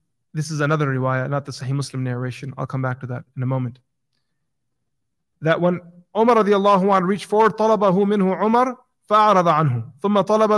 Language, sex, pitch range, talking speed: English, male, 145-205 Hz, 175 wpm